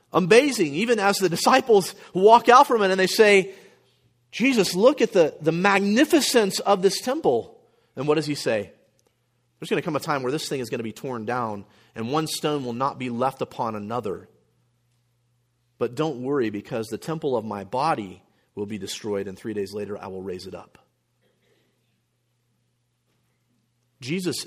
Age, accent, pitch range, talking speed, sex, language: 40-59, American, 115-160 Hz, 175 wpm, male, English